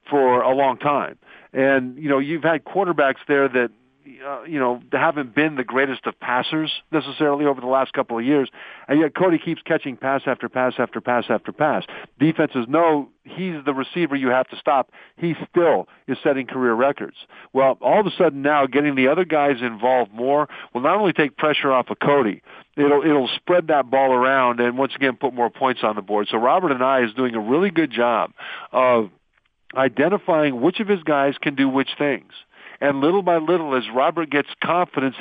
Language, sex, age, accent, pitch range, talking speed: English, male, 50-69, American, 125-150 Hz, 205 wpm